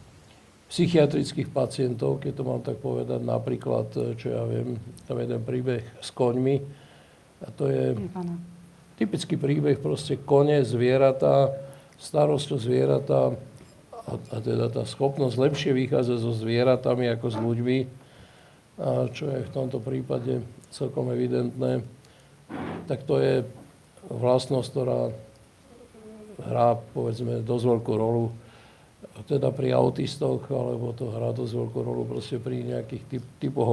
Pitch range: 110-140 Hz